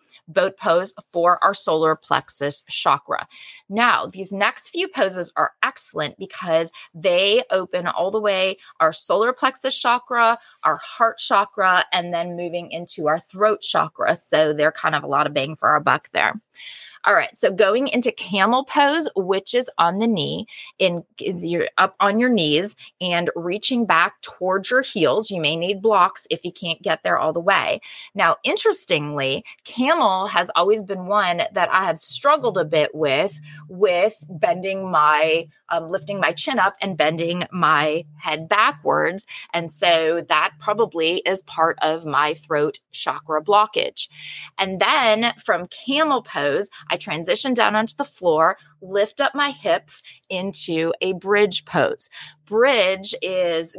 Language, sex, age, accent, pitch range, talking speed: English, female, 20-39, American, 165-225 Hz, 155 wpm